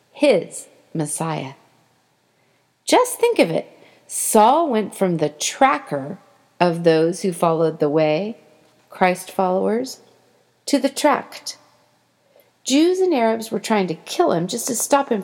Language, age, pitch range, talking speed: English, 40-59, 170-235 Hz, 135 wpm